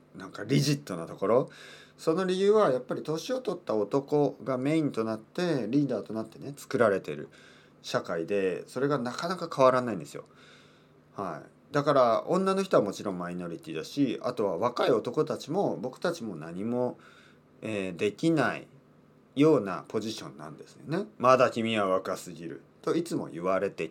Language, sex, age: Japanese, male, 40-59